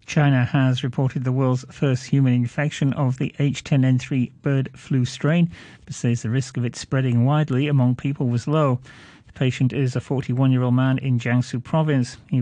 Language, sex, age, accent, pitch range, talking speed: English, male, 40-59, British, 120-140 Hz, 175 wpm